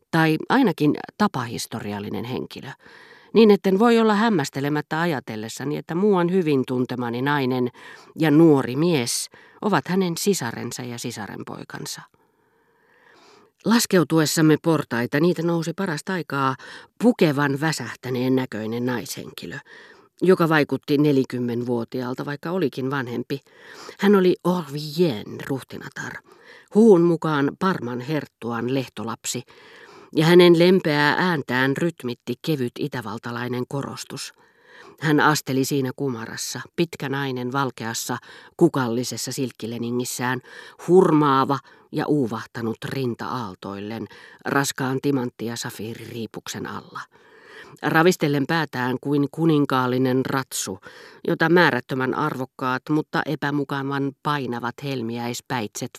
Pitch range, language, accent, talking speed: 125-165 Hz, Finnish, native, 95 wpm